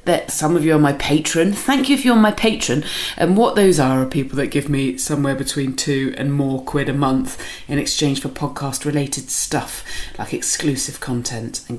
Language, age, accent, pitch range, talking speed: English, 30-49, British, 130-165 Hz, 205 wpm